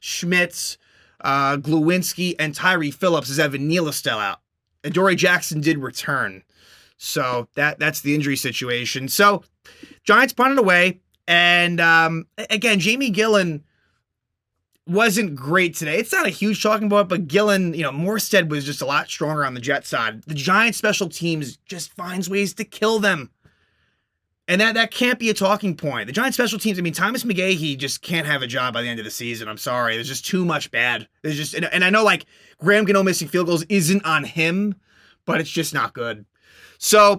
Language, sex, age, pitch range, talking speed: English, male, 30-49, 145-195 Hz, 190 wpm